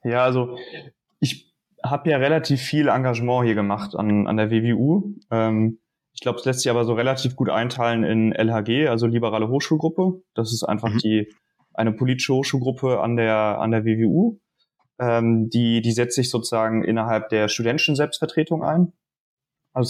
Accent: German